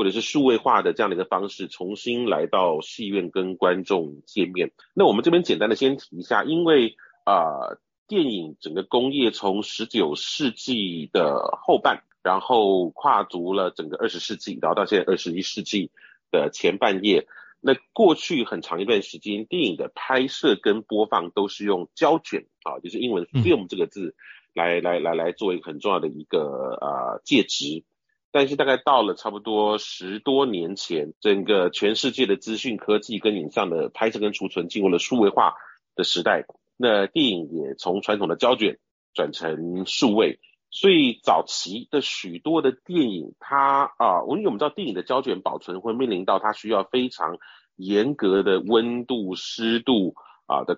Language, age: Chinese, 30-49